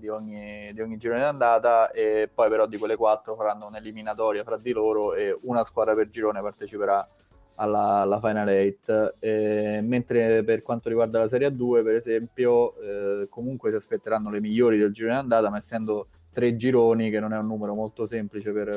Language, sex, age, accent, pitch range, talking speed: Italian, male, 20-39, native, 105-115 Hz, 180 wpm